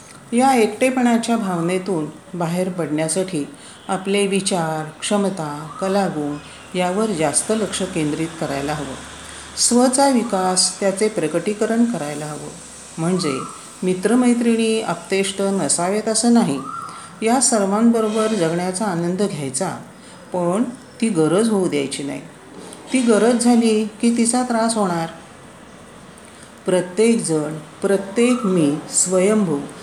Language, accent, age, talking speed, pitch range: Marathi, native, 40-59, 100 wpm, 170-225 Hz